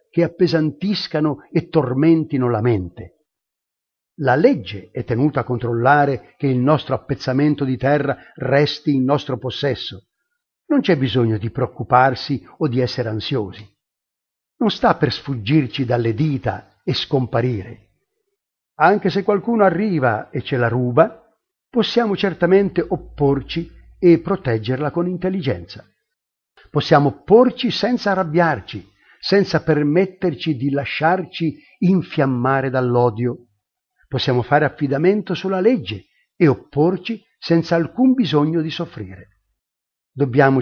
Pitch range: 125-175 Hz